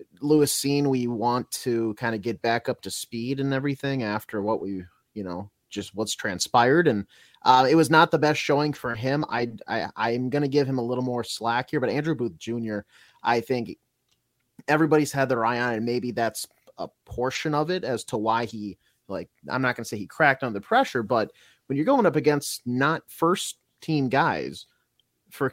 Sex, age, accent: male, 30-49, American